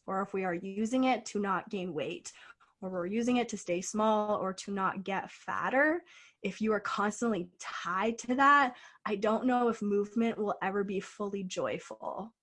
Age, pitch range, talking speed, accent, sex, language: 20-39, 190-230 Hz, 190 wpm, American, female, English